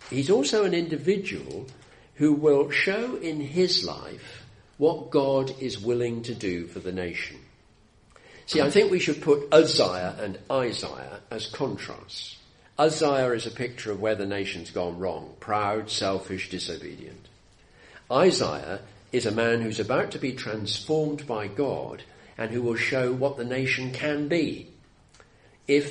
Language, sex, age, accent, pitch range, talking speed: English, male, 50-69, British, 95-145 Hz, 150 wpm